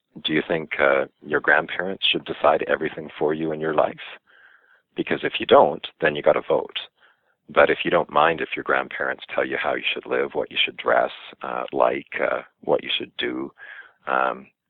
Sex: male